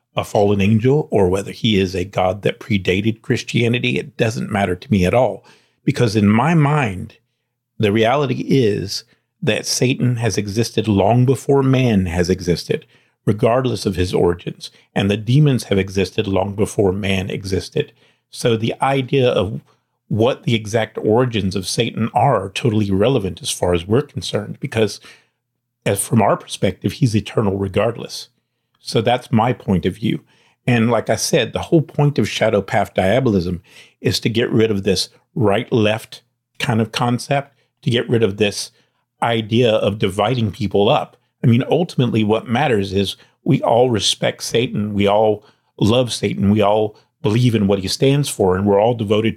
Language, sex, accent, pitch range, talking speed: English, male, American, 100-125 Hz, 170 wpm